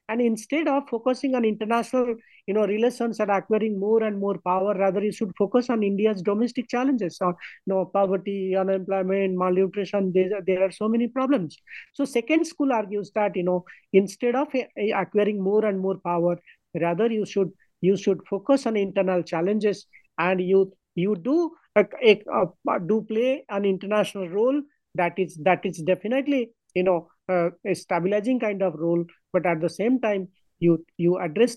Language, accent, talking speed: English, Indian, 180 wpm